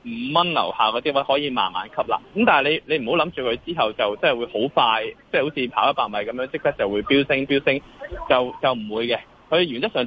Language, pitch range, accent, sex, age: Chinese, 115-145 Hz, native, male, 20-39